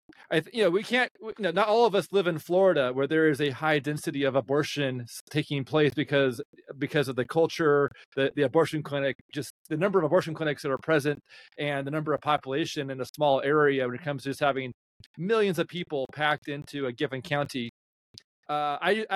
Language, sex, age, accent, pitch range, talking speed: English, male, 30-49, American, 135-160 Hz, 215 wpm